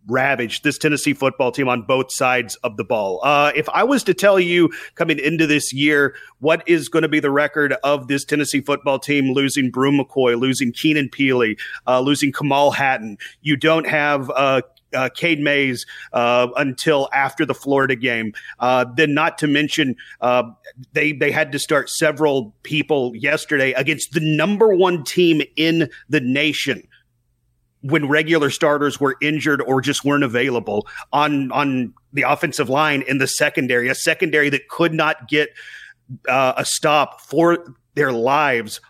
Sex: male